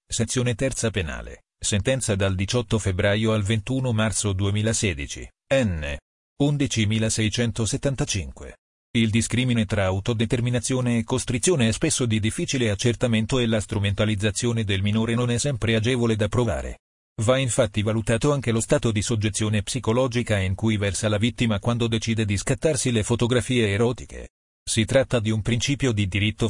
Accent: native